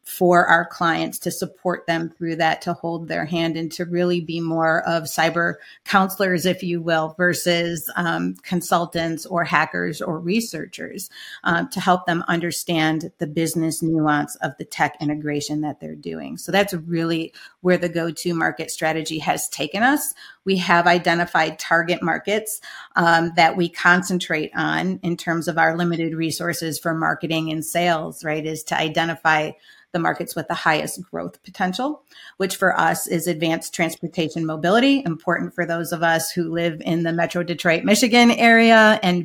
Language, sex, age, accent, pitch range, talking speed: English, female, 40-59, American, 160-175 Hz, 165 wpm